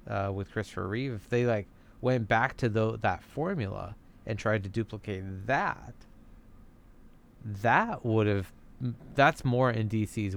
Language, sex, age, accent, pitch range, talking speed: English, male, 30-49, American, 100-130 Hz, 145 wpm